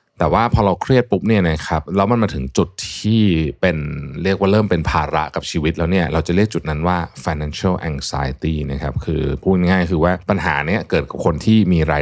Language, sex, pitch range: Thai, male, 75-100 Hz